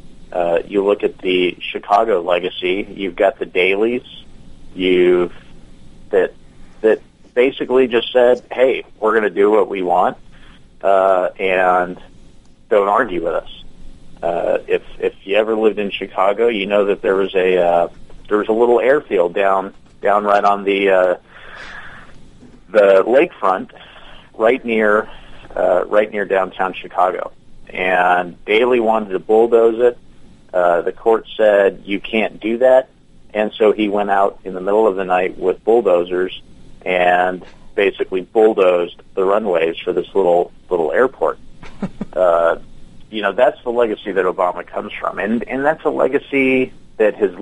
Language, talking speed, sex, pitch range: English, 150 wpm, male, 90-125 Hz